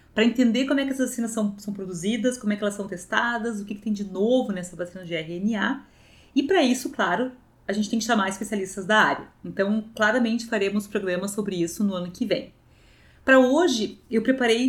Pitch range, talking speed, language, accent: 210-265 Hz, 215 wpm, Portuguese, Brazilian